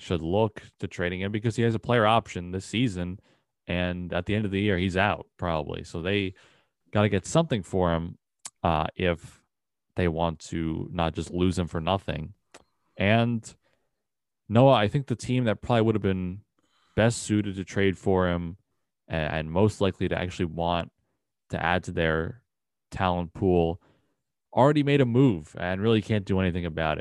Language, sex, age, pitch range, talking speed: English, male, 20-39, 90-110 Hz, 180 wpm